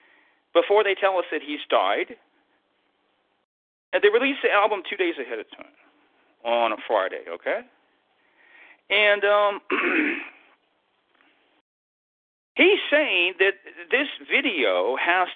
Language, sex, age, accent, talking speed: English, male, 40-59, American, 115 wpm